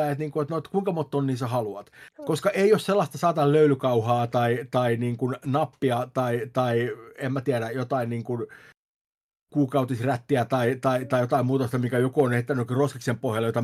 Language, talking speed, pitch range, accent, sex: Finnish, 185 wpm, 125-160 Hz, native, male